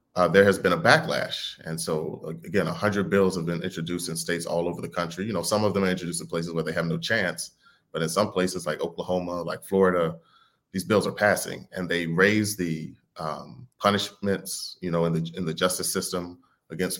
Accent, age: American, 30-49